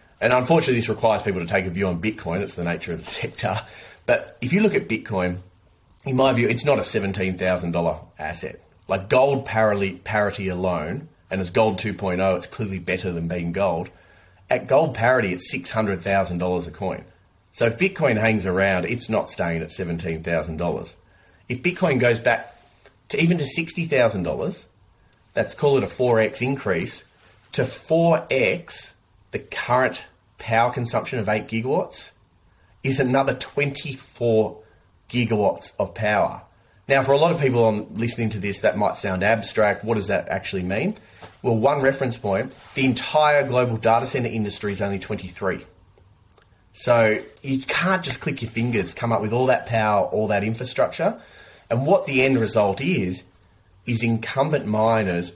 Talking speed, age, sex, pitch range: 160 wpm, 30-49, male, 95-125 Hz